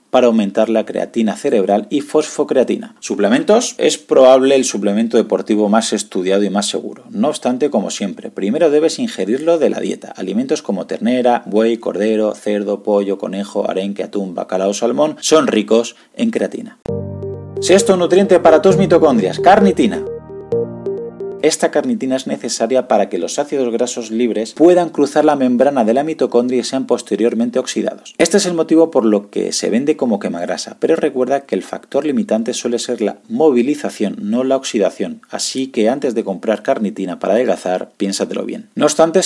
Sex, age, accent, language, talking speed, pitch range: male, 40-59, Spanish, Spanish, 165 wpm, 110-165 Hz